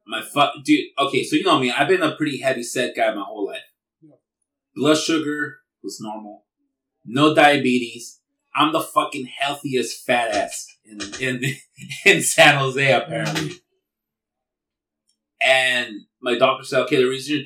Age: 30-49